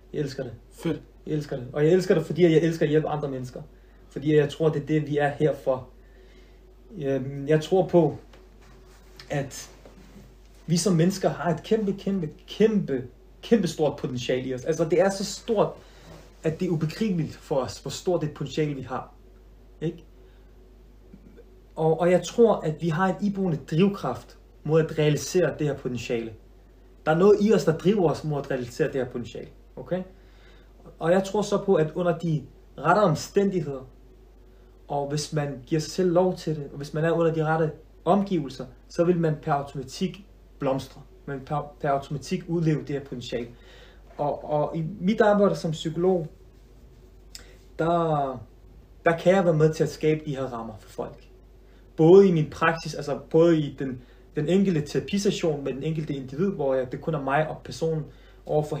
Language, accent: Danish, native